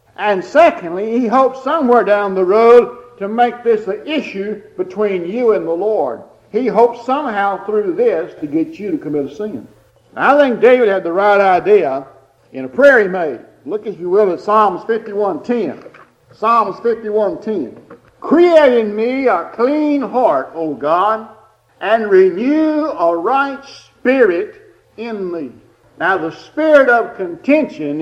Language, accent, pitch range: English, American, 180-275 Hz